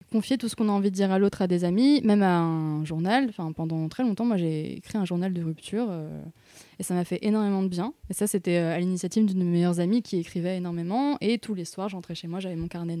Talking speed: 265 wpm